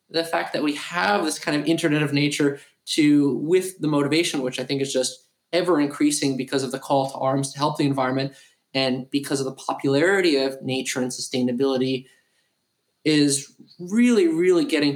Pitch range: 140-170 Hz